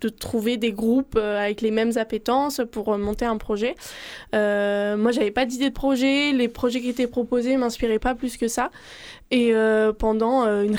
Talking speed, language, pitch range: 200 wpm, French, 215-250 Hz